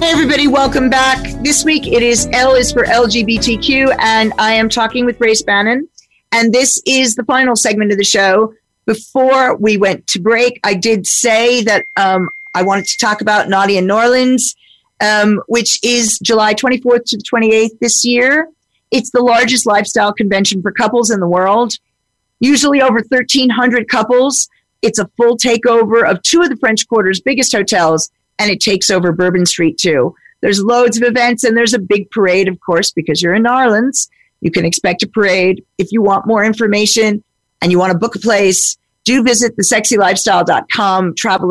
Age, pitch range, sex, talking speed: 40-59, 190-245 Hz, female, 180 wpm